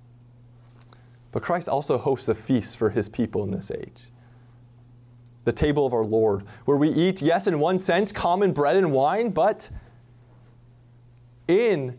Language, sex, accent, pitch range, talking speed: English, male, American, 120-160 Hz, 150 wpm